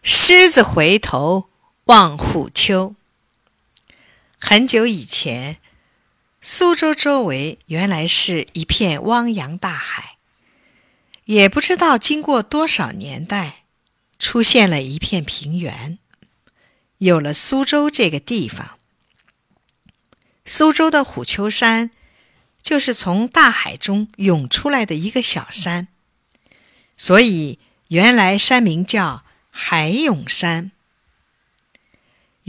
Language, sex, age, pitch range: Chinese, female, 50-69, 170-260 Hz